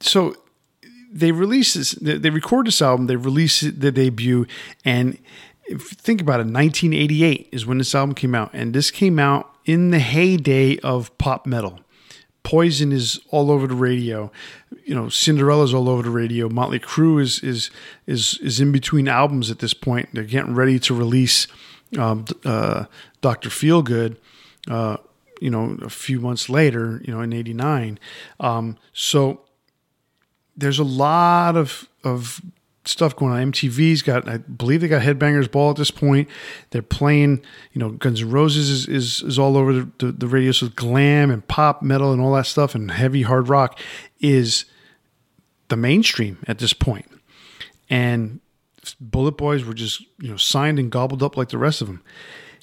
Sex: male